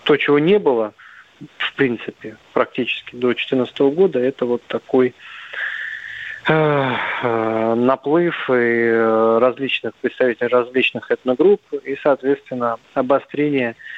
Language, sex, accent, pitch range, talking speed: Russian, male, native, 120-145 Hz, 100 wpm